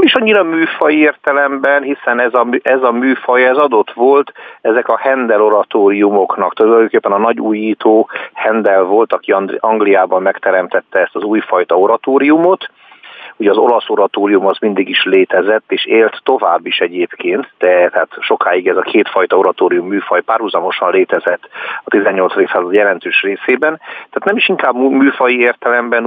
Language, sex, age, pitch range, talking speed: Hungarian, male, 50-69, 105-165 Hz, 145 wpm